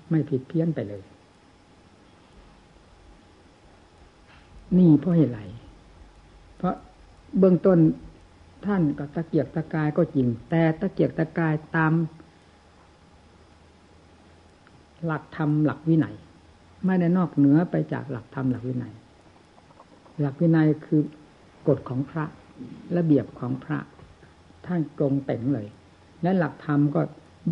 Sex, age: female, 60-79